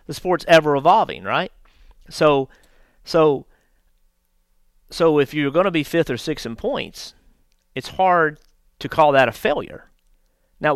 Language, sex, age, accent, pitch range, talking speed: English, male, 40-59, American, 125-165 Hz, 140 wpm